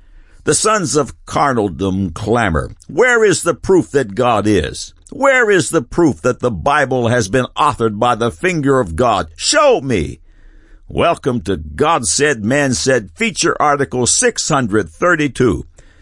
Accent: American